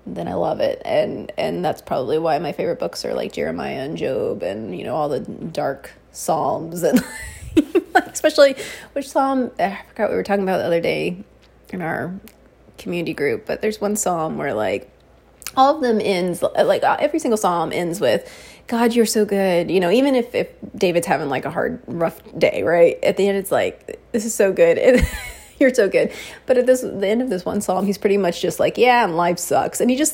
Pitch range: 200-310 Hz